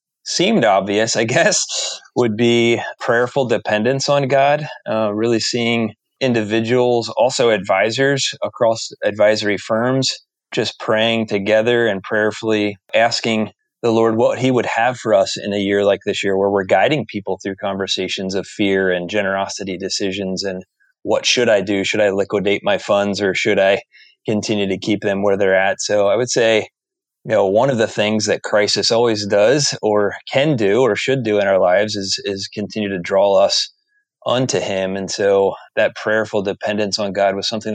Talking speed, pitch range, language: 175 wpm, 100-115 Hz, English